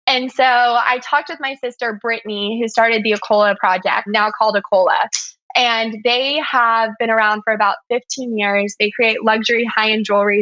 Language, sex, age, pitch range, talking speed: English, female, 20-39, 210-245 Hz, 180 wpm